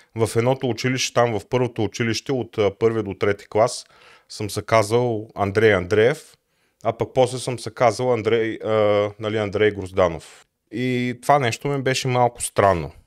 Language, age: Bulgarian, 30-49